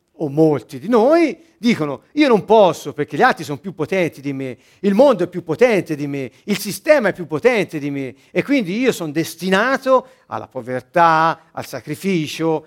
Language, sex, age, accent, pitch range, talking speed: Italian, male, 50-69, native, 150-250 Hz, 185 wpm